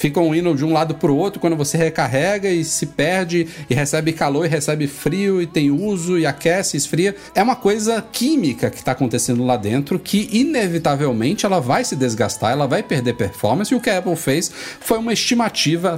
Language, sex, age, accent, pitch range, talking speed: Portuguese, male, 40-59, Brazilian, 135-205 Hz, 205 wpm